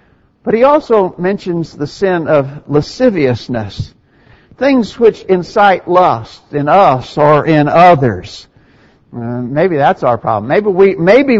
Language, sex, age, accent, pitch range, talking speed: English, male, 60-79, American, 135-180 Hz, 125 wpm